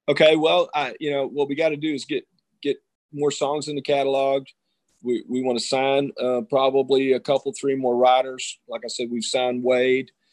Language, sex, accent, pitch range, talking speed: English, male, American, 125-145 Hz, 200 wpm